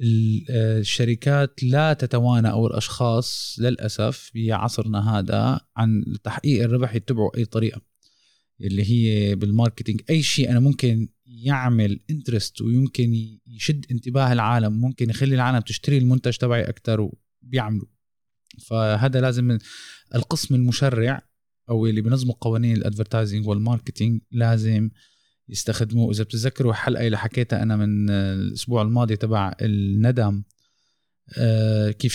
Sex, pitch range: male, 110-125 Hz